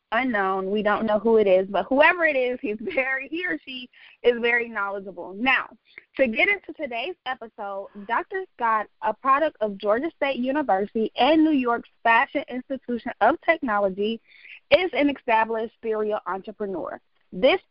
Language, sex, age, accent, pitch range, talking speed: English, female, 20-39, American, 215-290 Hz, 155 wpm